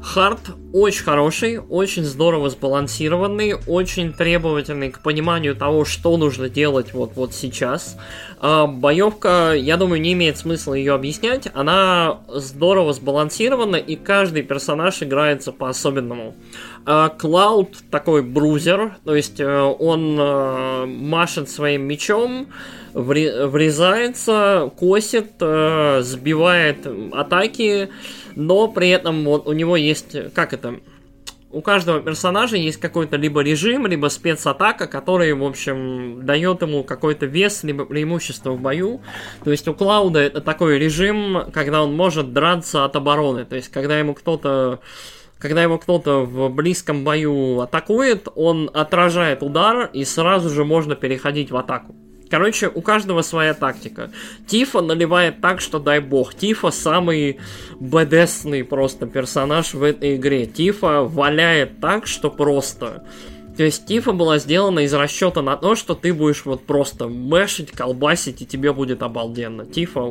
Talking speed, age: 130 wpm, 20-39